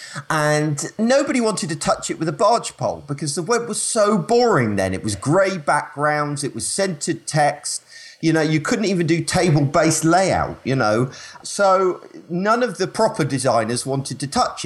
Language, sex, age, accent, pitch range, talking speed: English, male, 40-59, British, 115-165 Hz, 180 wpm